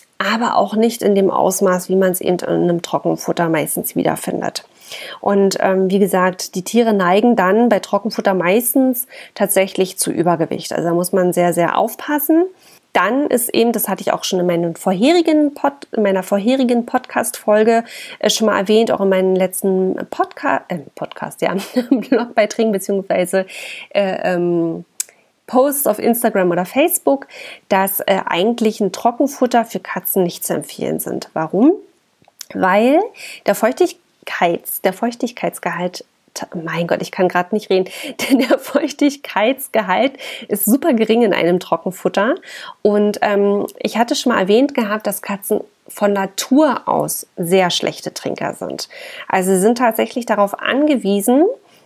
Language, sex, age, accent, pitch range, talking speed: German, female, 30-49, German, 190-255 Hz, 150 wpm